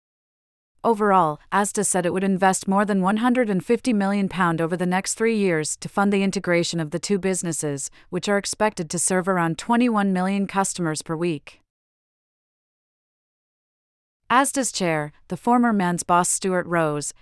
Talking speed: 145 wpm